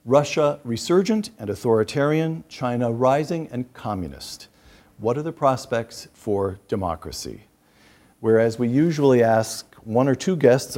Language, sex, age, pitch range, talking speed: English, male, 50-69, 110-135 Hz, 120 wpm